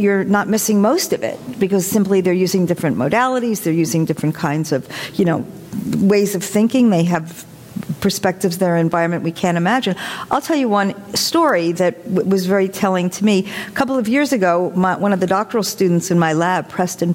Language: English